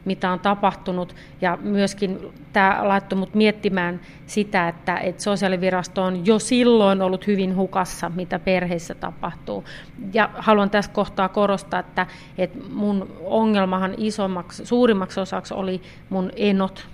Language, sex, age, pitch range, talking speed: Finnish, female, 40-59, 185-210 Hz, 125 wpm